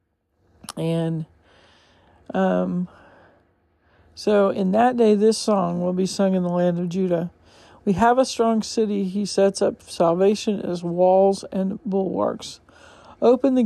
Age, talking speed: 40-59, 135 wpm